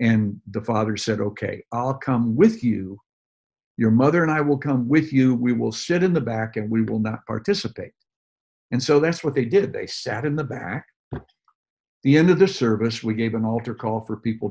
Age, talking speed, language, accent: 60-79, 215 wpm, English, American